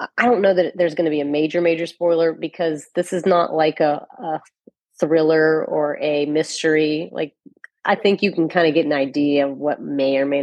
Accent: American